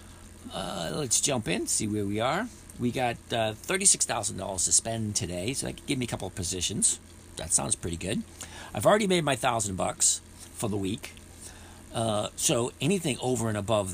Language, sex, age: English, male, 50-69